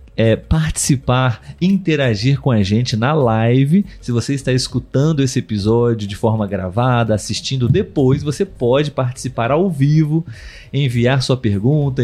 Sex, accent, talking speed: male, Brazilian, 135 wpm